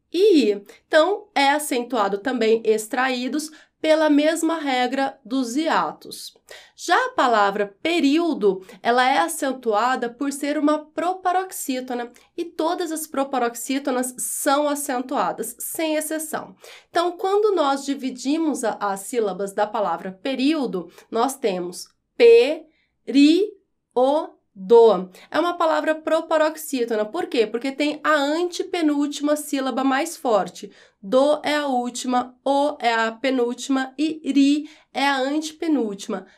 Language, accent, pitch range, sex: Portuguese, Brazilian, 240-310 Hz, female